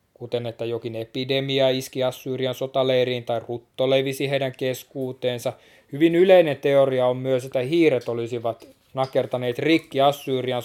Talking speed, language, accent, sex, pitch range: 130 wpm, Finnish, native, male, 120-150 Hz